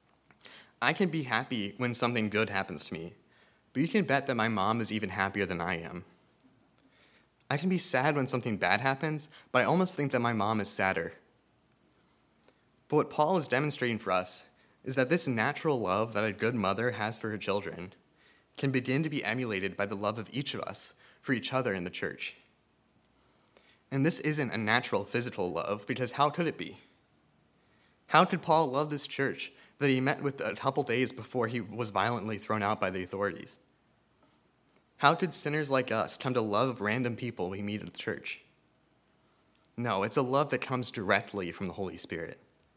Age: 20-39